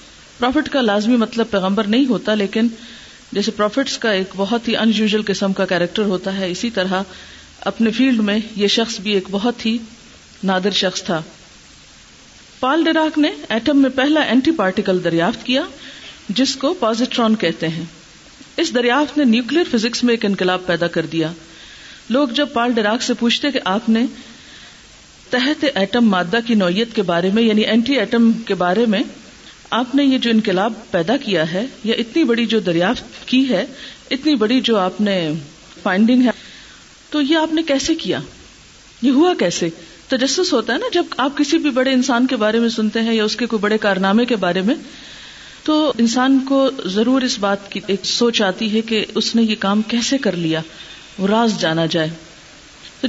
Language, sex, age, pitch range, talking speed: Urdu, female, 50-69, 195-265 Hz, 185 wpm